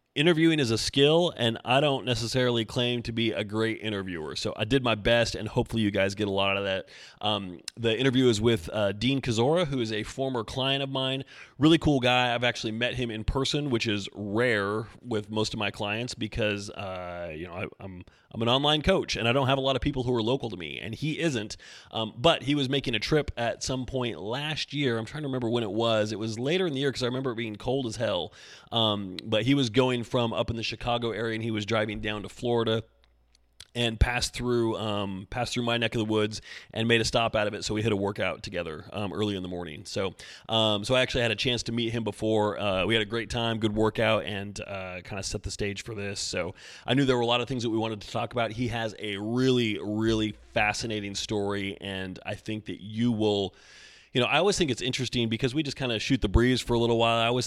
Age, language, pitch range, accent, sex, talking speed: 30-49, English, 105-125 Hz, American, male, 250 wpm